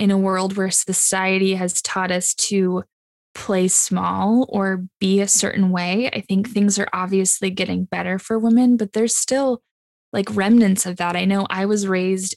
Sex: female